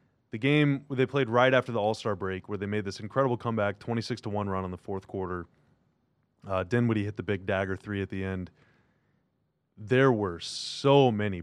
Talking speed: 195 wpm